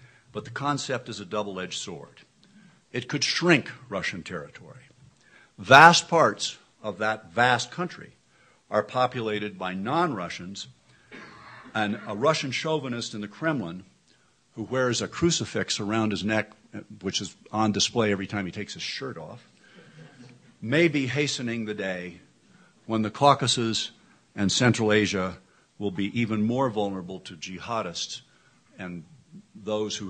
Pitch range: 105-135 Hz